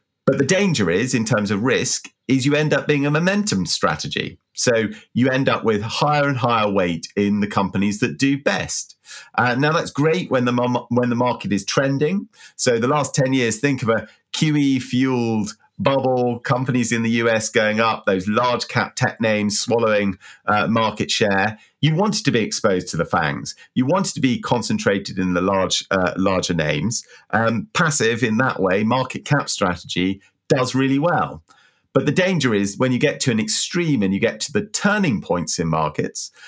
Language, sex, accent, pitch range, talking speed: English, male, British, 105-135 Hz, 190 wpm